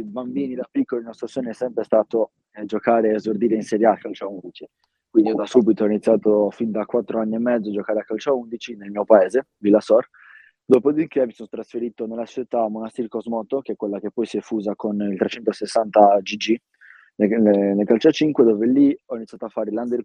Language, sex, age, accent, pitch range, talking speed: Italian, male, 20-39, native, 110-125 Hz, 225 wpm